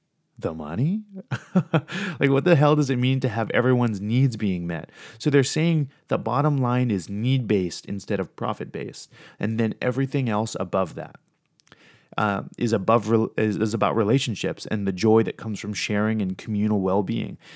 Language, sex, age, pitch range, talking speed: English, male, 30-49, 105-135 Hz, 170 wpm